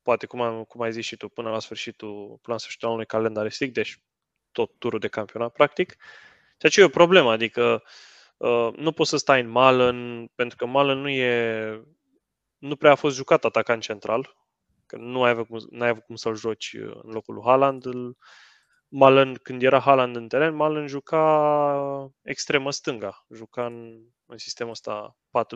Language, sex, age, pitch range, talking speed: Romanian, male, 20-39, 115-140 Hz, 185 wpm